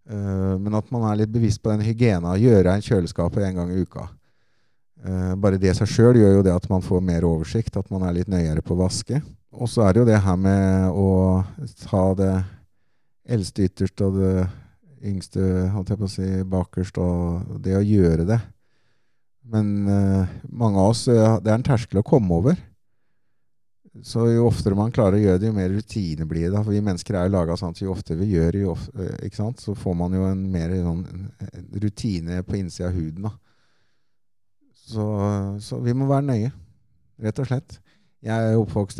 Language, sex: English, male